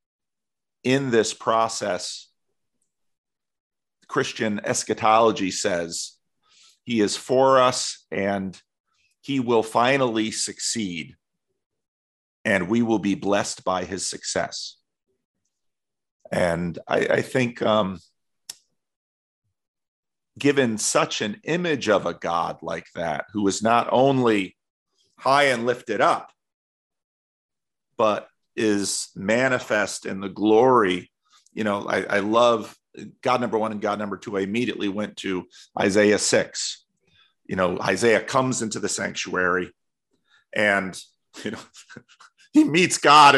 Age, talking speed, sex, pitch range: 40-59, 115 wpm, male, 100-125 Hz